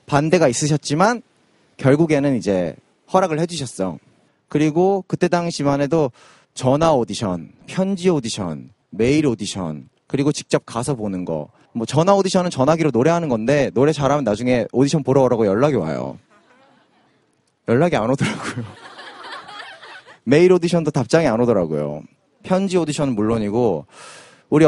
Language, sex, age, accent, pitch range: Korean, male, 30-49, native, 125-190 Hz